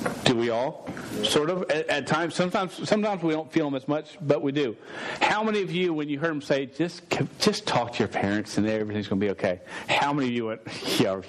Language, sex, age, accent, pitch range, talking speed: English, male, 40-59, American, 135-170 Hz, 245 wpm